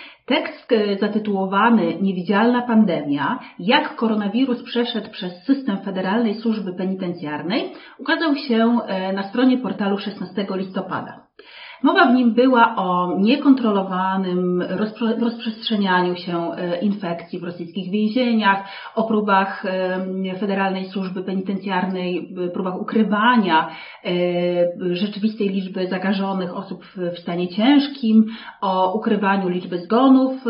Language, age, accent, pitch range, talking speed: Polish, 40-59, native, 185-230 Hz, 95 wpm